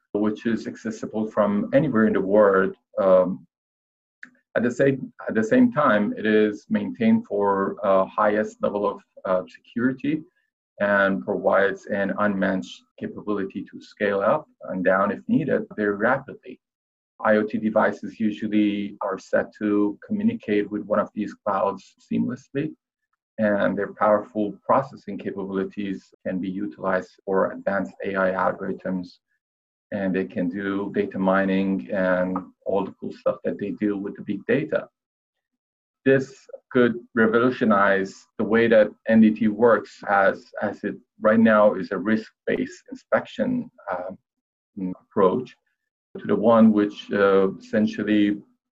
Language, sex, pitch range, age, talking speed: English, male, 95-125 Hz, 40-59, 130 wpm